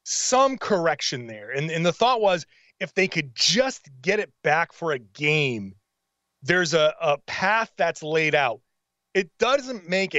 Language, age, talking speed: English, 30-49, 165 wpm